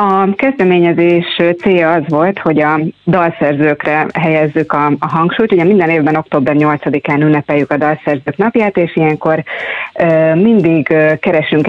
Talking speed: 125 wpm